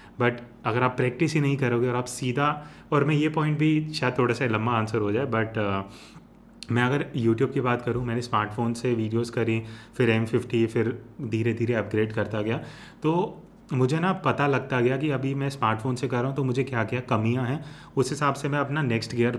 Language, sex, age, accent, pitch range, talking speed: Hindi, male, 30-49, native, 110-135 Hz, 215 wpm